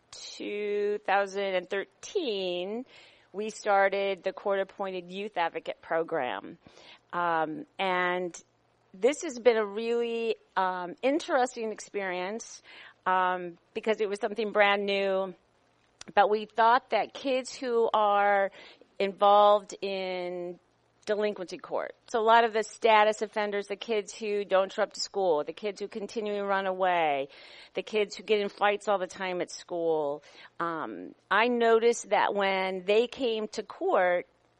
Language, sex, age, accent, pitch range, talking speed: English, female, 40-59, American, 185-225 Hz, 135 wpm